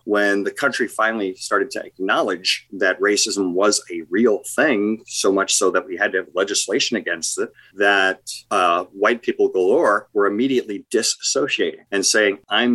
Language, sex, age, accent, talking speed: English, male, 40-59, American, 165 wpm